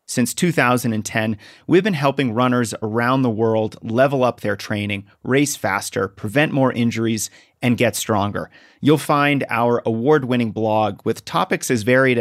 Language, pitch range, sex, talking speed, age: English, 110-135 Hz, male, 150 wpm, 30-49